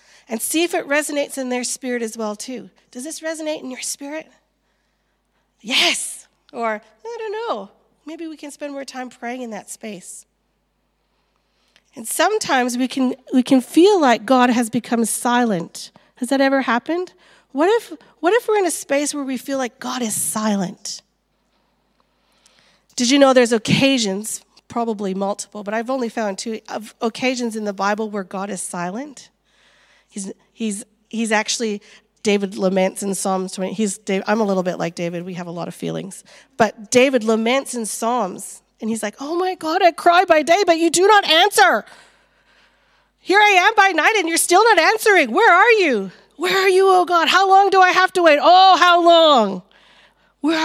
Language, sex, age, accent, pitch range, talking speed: English, female, 40-59, American, 215-330 Hz, 185 wpm